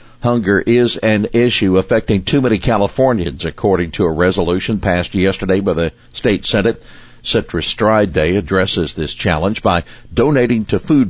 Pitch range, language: 90-120 Hz, English